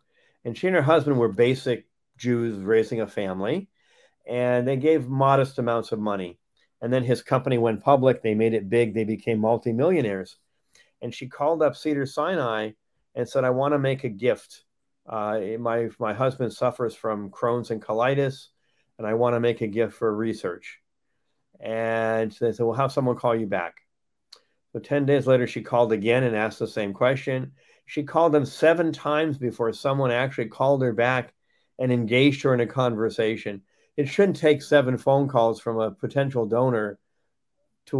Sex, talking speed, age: male, 175 wpm, 50-69